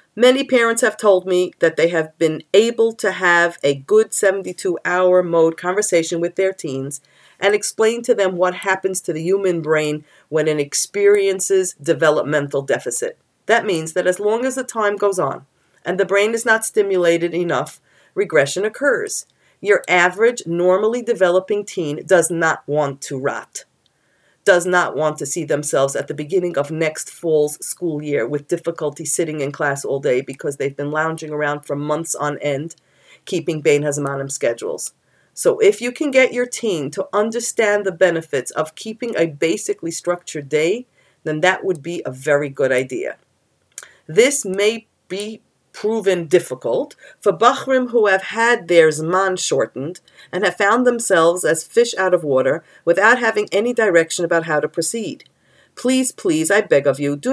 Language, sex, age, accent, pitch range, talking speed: English, female, 40-59, American, 160-220 Hz, 165 wpm